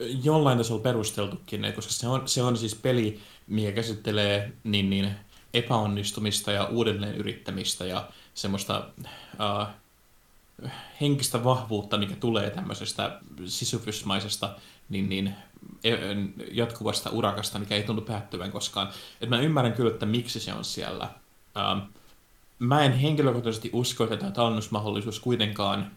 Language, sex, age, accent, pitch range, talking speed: Finnish, male, 20-39, native, 100-120 Hz, 125 wpm